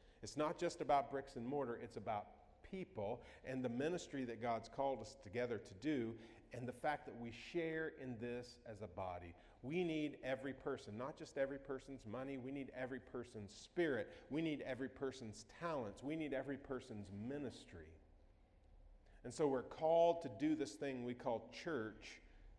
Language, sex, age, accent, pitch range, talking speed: English, male, 40-59, American, 115-175 Hz, 175 wpm